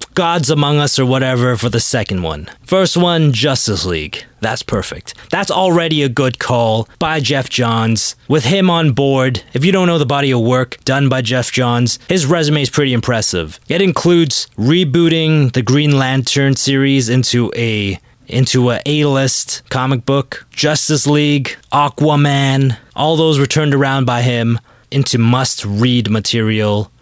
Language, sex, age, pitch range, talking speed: English, male, 20-39, 115-145 Hz, 160 wpm